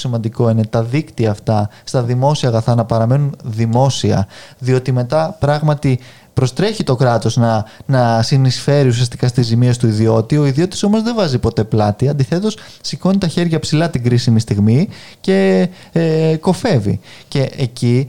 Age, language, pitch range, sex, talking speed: 20-39, Greek, 120-155 Hz, male, 145 wpm